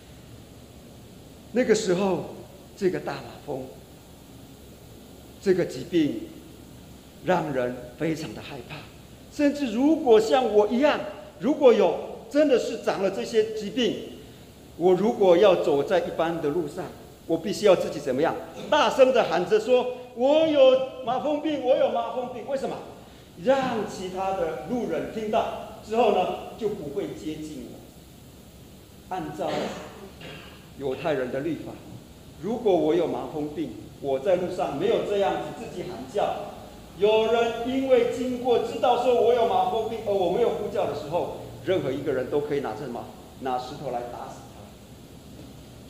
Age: 50-69